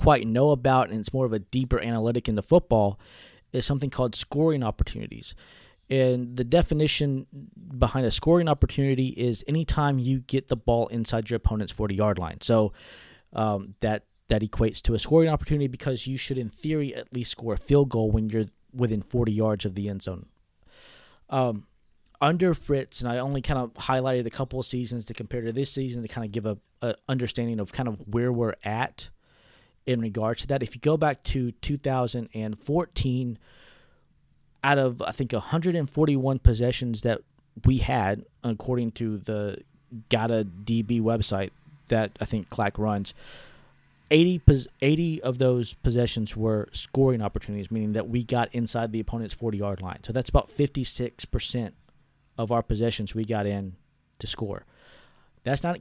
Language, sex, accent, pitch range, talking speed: English, male, American, 110-135 Hz, 170 wpm